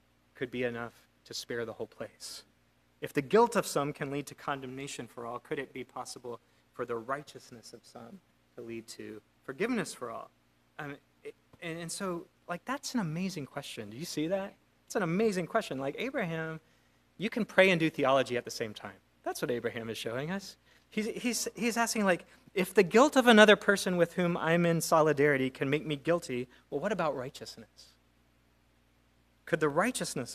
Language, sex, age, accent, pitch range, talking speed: English, male, 30-49, American, 115-185 Hz, 190 wpm